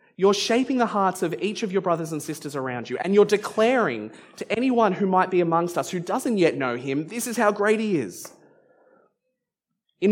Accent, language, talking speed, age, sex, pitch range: Australian, English, 210 wpm, 20-39, male, 160-210 Hz